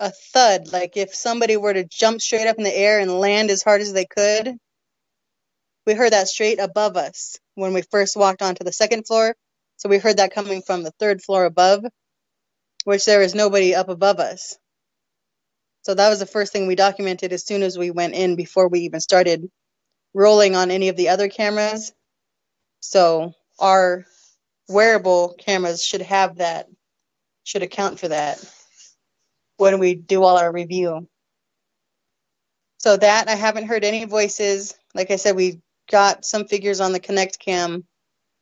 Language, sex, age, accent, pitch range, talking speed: English, female, 20-39, American, 185-210 Hz, 175 wpm